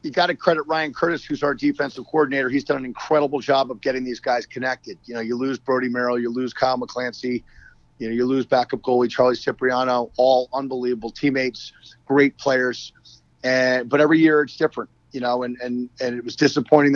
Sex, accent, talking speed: male, American, 200 wpm